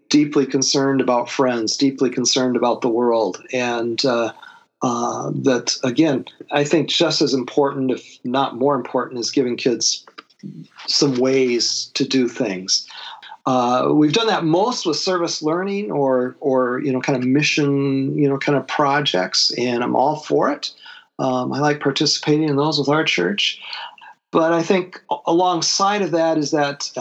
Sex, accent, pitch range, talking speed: male, American, 125-155 Hz, 160 wpm